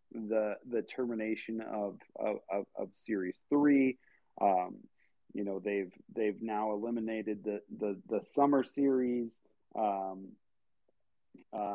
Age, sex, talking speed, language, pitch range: 30-49, male, 115 wpm, English, 105-125 Hz